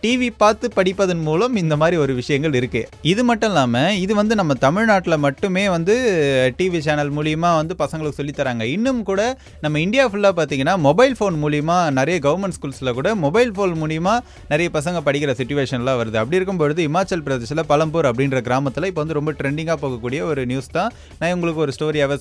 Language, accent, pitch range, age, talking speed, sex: Tamil, native, 130-180 Hz, 20-39, 175 wpm, male